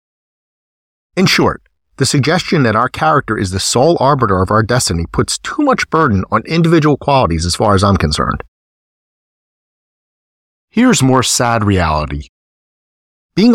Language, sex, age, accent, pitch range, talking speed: English, male, 40-59, American, 95-130 Hz, 135 wpm